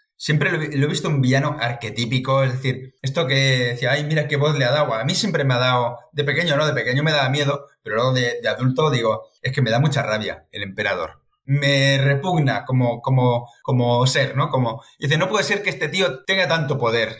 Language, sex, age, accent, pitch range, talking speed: Spanish, male, 30-49, Spanish, 120-145 Hz, 220 wpm